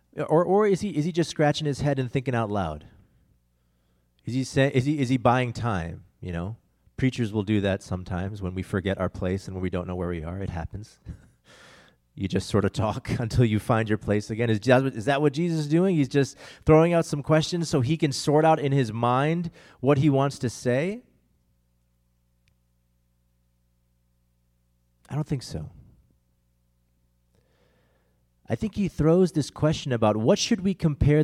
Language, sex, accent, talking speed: English, male, American, 185 wpm